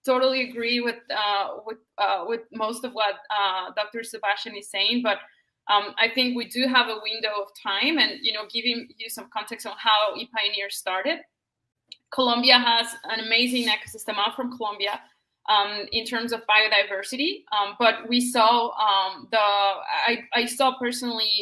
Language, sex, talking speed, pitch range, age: English, female, 170 wpm, 205-240 Hz, 20-39